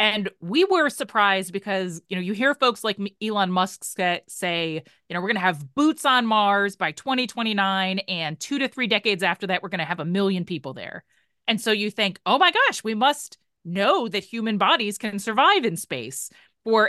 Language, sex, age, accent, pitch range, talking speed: English, female, 30-49, American, 185-245 Hz, 205 wpm